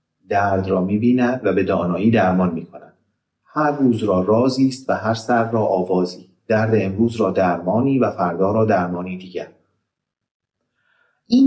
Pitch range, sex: 100-135 Hz, male